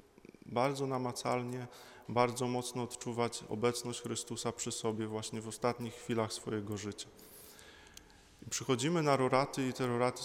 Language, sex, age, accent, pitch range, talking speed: Polish, male, 20-39, native, 110-120 Hz, 125 wpm